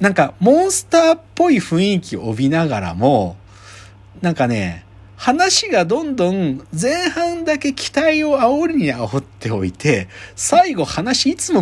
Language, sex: Japanese, male